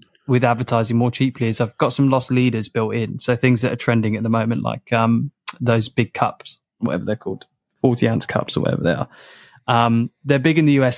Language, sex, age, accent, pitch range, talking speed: English, male, 10-29, British, 115-135 Hz, 230 wpm